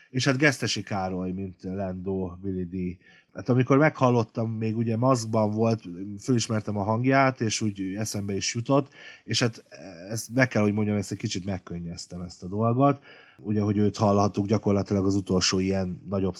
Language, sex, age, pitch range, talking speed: Hungarian, male, 30-49, 95-125 Hz, 170 wpm